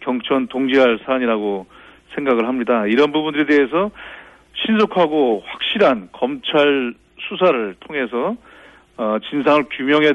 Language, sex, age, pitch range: Korean, male, 40-59, 125-160 Hz